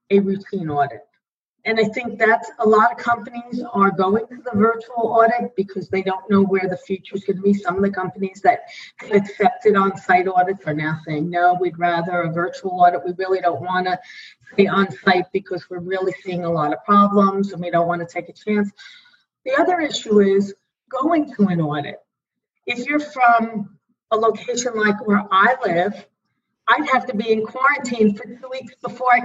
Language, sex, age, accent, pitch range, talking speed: English, female, 40-59, American, 185-230 Hz, 195 wpm